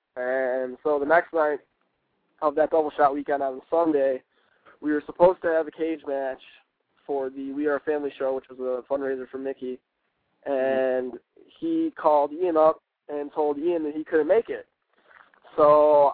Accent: American